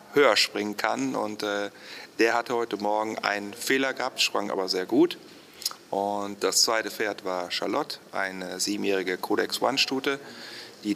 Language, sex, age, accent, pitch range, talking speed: German, male, 40-59, German, 100-125 Hz, 140 wpm